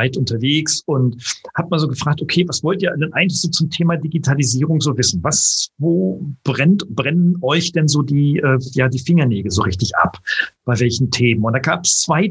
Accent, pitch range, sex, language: German, 130-175 Hz, male, German